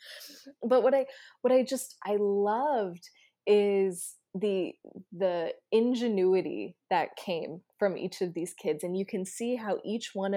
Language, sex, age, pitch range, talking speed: English, female, 20-39, 180-210 Hz, 150 wpm